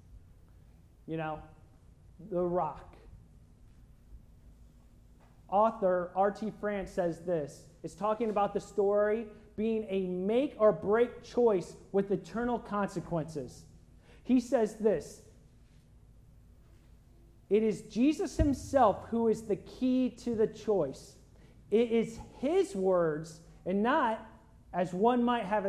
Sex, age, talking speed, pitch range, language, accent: male, 40-59, 110 wpm, 175-230 Hz, English, American